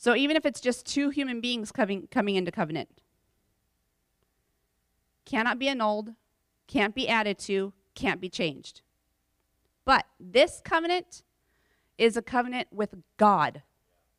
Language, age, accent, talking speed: English, 30-49, American, 125 wpm